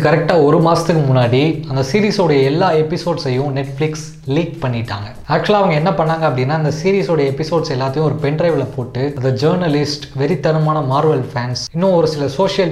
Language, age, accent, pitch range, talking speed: Tamil, 20-39, native, 135-175 Hz, 50 wpm